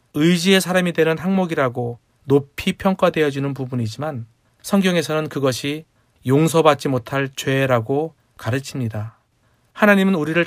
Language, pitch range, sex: Korean, 125-160 Hz, male